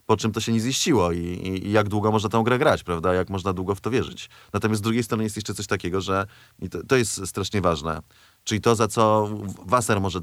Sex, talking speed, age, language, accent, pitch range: male, 245 wpm, 30-49, Polish, native, 95-115 Hz